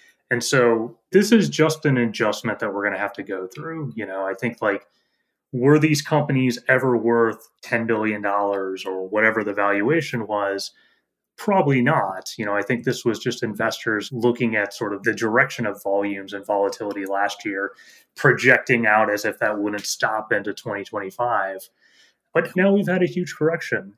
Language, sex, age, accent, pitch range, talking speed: English, male, 30-49, American, 105-140 Hz, 180 wpm